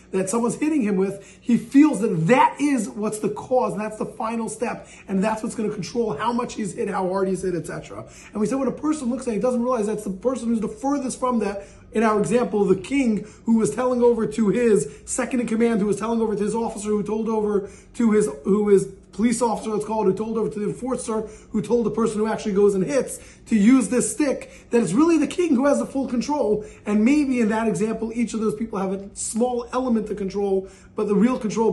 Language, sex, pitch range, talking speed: English, male, 200-255 Hz, 250 wpm